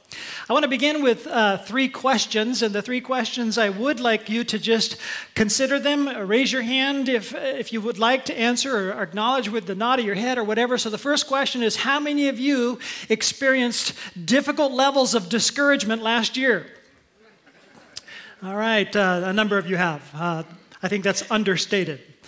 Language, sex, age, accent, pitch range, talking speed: English, male, 40-59, American, 195-255 Hz, 185 wpm